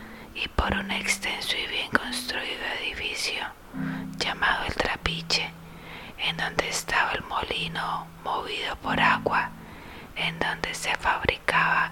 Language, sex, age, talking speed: Spanish, female, 30-49, 115 wpm